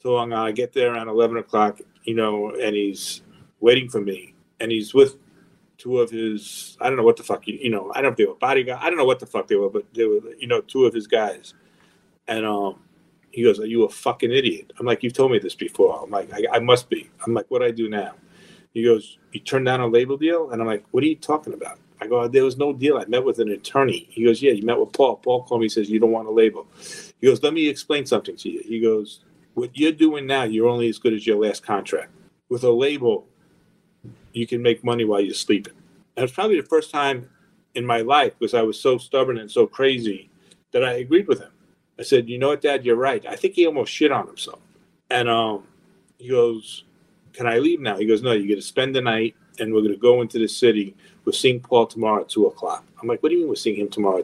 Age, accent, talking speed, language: 40-59, American, 260 wpm, English